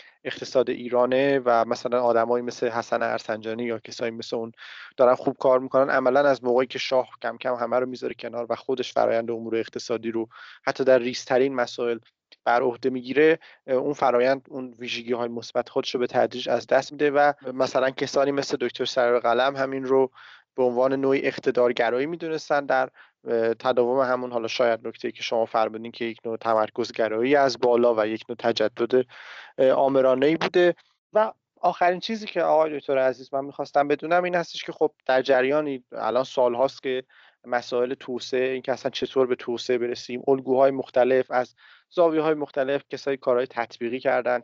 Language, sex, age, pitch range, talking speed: Persian, male, 30-49, 120-135 Hz, 170 wpm